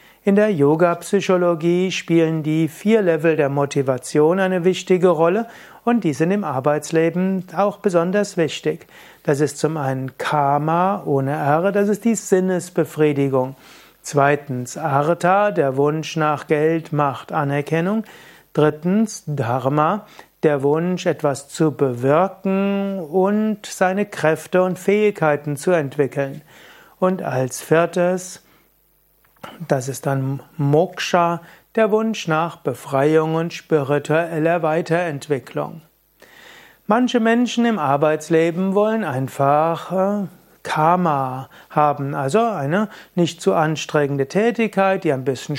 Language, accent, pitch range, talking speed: German, German, 145-185 Hz, 110 wpm